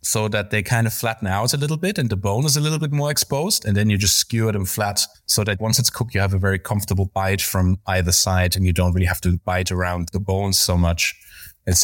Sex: male